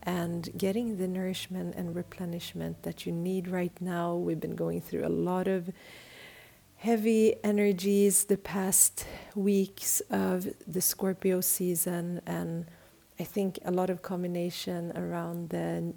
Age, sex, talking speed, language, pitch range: 40-59, female, 135 wpm, English, 155-185 Hz